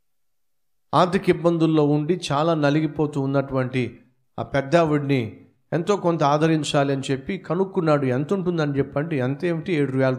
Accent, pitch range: native, 130-165 Hz